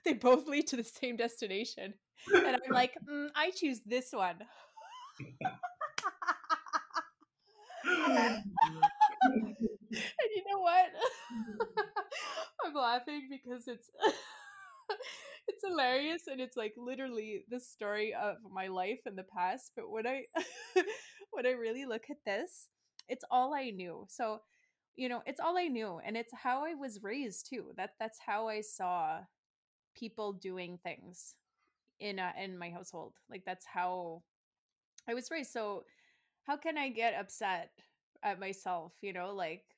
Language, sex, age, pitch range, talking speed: English, female, 20-39, 205-325 Hz, 140 wpm